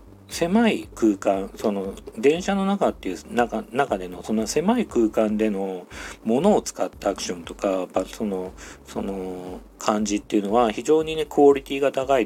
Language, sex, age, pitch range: Japanese, male, 40-59, 95-140 Hz